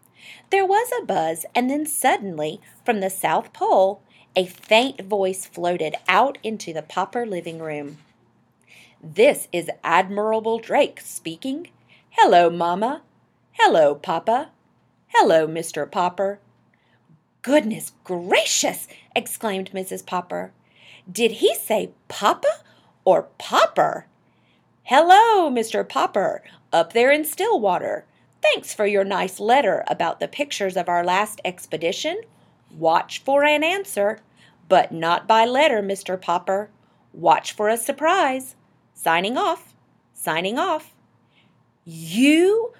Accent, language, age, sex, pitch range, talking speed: American, English, 40-59, female, 180-290 Hz, 115 wpm